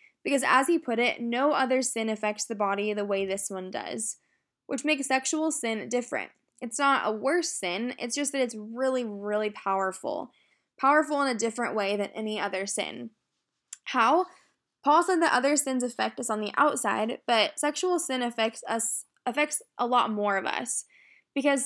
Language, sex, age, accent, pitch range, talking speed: English, female, 10-29, American, 220-275 Hz, 180 wpm